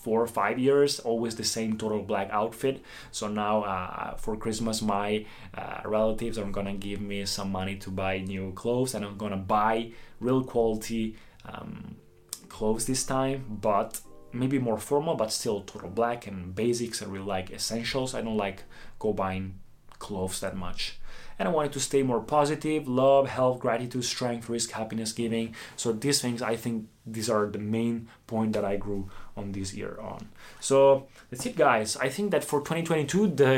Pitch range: 105-135 Hz